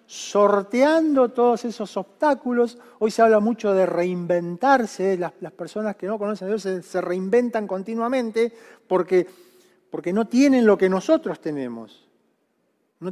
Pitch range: 185-250 Hz